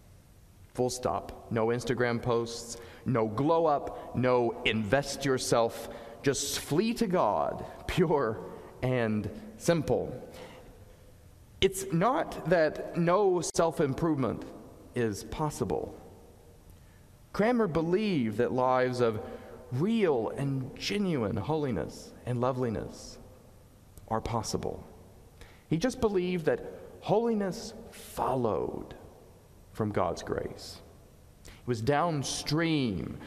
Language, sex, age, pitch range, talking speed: English, male, 40-59, 105-155 Hz, 90 wpm